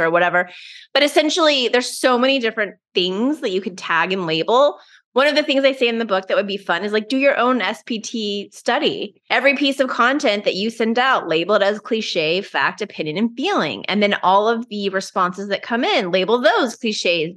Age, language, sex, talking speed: 20-39, English, female, 220 wpm